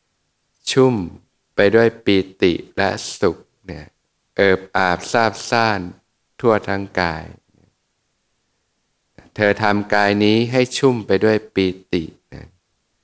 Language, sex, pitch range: Thai, male, 90-105 Hz